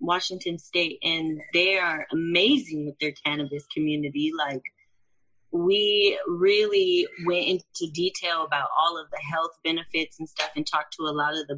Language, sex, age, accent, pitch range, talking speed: English, female, 20-39, American, 155-195 Hz, 160 wpm